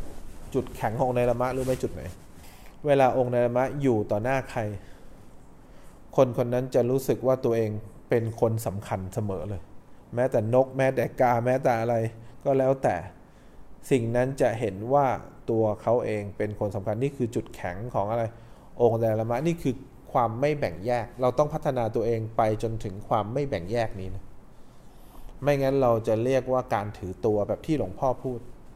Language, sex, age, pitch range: English, male, 20-39, 105-130 Hz